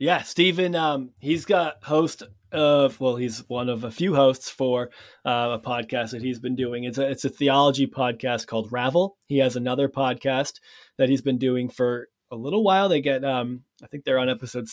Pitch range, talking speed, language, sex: 115-145 Hz, 205 wpm, English, male